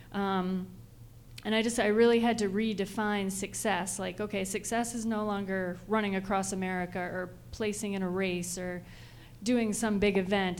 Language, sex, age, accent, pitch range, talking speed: English, female, 30-49, American, 185-210 Hz, 165 wpm